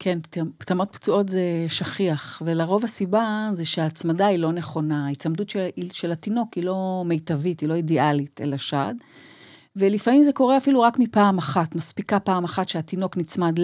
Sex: female